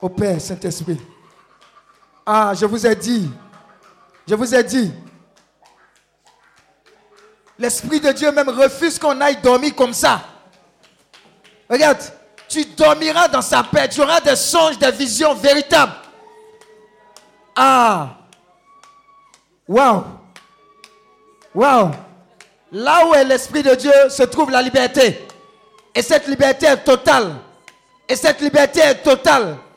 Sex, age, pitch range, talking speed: male, 50-69, 215-300 Hz, 115 wpm